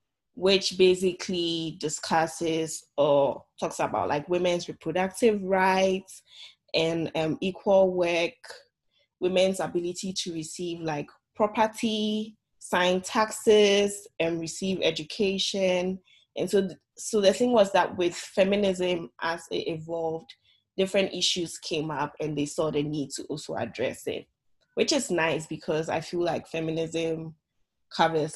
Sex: female